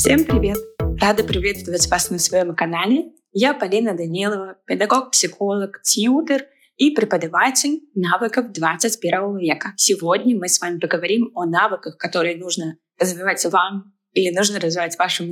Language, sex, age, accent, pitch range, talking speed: Russian, female, 20-39, native, 175-215 Hz, 135 wpm